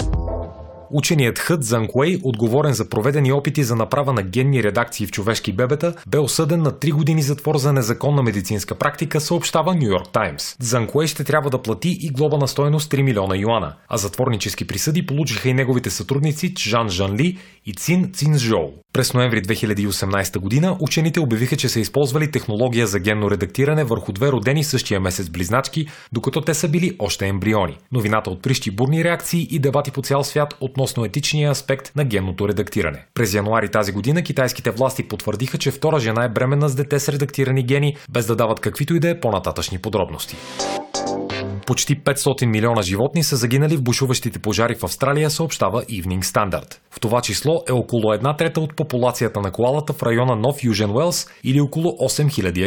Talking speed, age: 170 wpm, 30-49